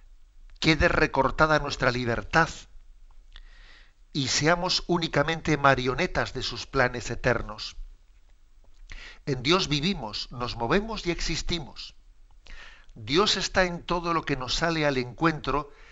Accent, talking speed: Spanish, 110 wpm